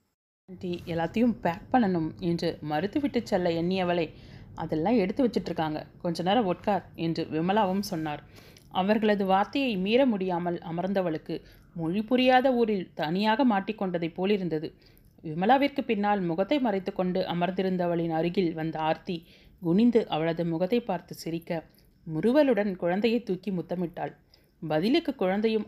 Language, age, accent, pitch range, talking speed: Tamil, 30-49, native, 165-215 Hz, 105 wpm